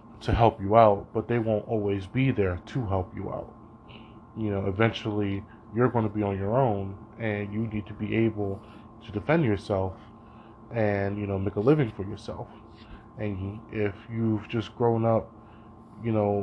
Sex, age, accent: male, 20-39, American